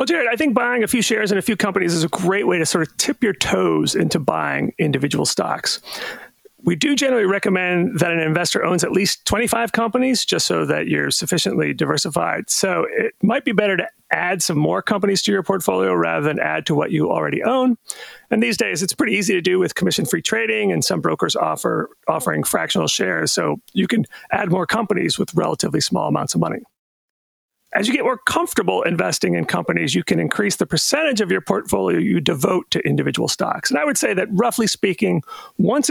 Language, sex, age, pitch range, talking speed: English, male, 40-59, 175-230 Hz, 210 wpm